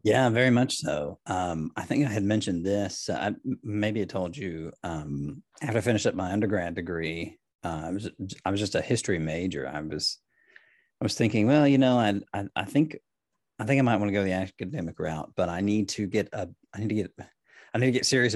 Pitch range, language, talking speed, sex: 90-125 Hz, English, 230 wpm, male